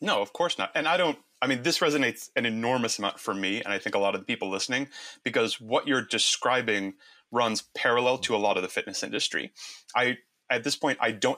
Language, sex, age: English, male, 30-49